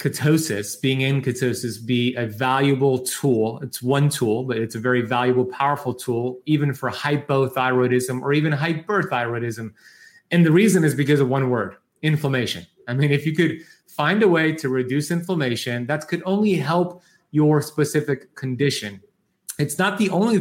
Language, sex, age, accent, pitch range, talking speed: English, male, 30-49, American, 125-150 Hz, 160 wpm